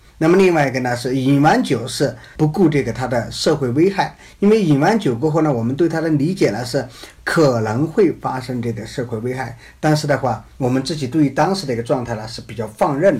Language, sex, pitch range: Chinese, male, 120-165 Hz